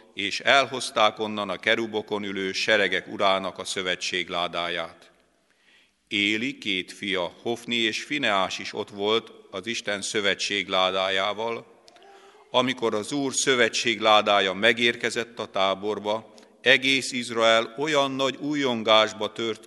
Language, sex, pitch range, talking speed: Hungarian, male, 95-115 Hz, 105 wpm